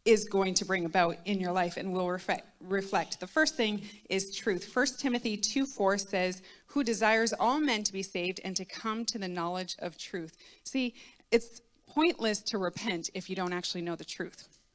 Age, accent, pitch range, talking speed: 30-49, American, 185-230 Hz, 190 wpm